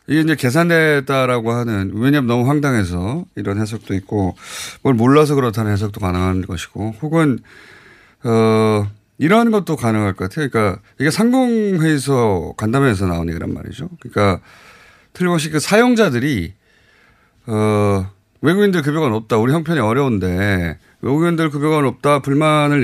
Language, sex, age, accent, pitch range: Korean, male, 30-49, native, 105-155 Hz